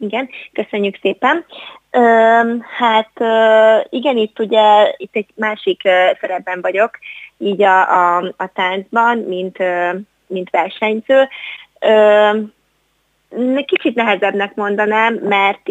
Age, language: 20-39, Hungarian